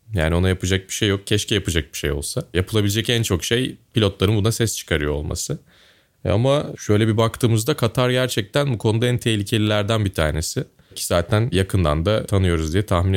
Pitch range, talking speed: 90-125 Hz, 180 wpm